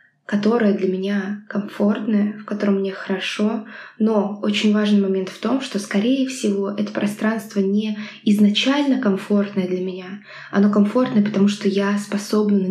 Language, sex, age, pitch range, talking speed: Russian, female, 20-39, 195-215 Hz, 145 wpm